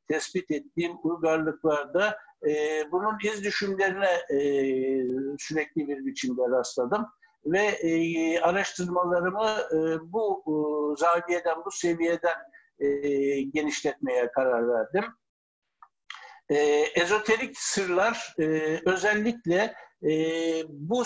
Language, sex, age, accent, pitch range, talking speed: Turkish, male, 60-79, native, 155-205 Hz, 90 wpm